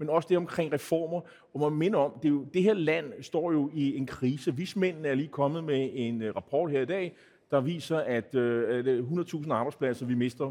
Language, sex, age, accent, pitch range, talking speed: Danish, male, 30-49, native, 135-185 Hz, 225 wpm